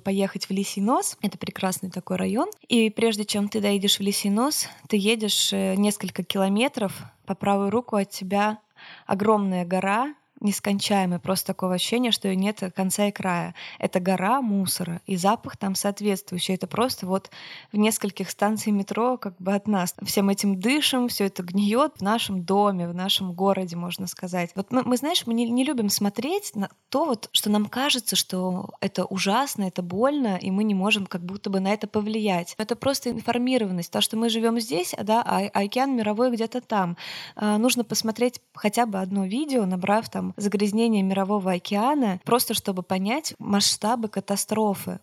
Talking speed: 170 wpm